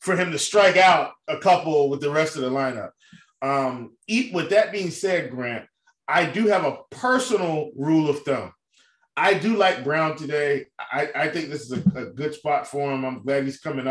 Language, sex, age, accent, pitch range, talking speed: English, male, 20-39, American, 140-190 Hz, 205 wpm